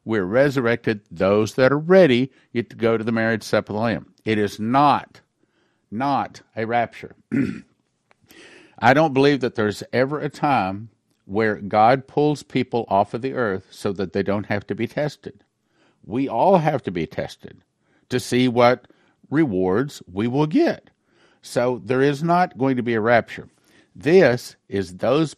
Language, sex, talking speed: English, male, 170 wpm